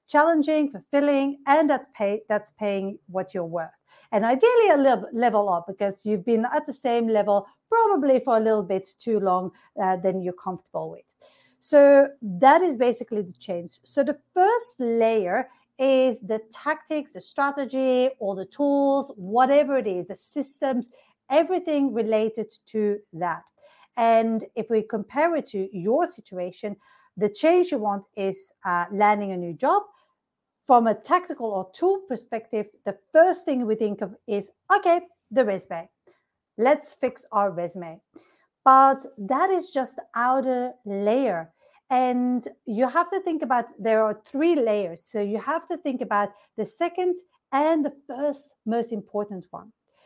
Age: 50-69